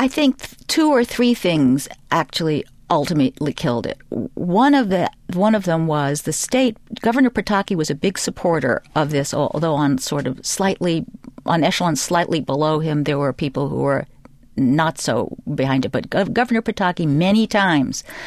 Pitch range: 140-185 Hz